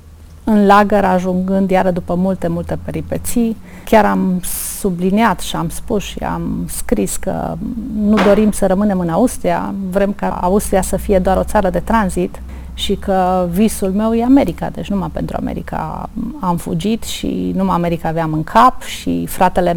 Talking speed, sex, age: 165 wpm, female, 30-49